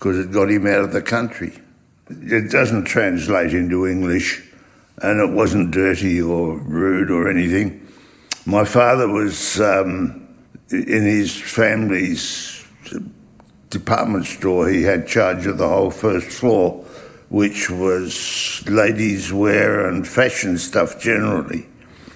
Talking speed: 125 wpm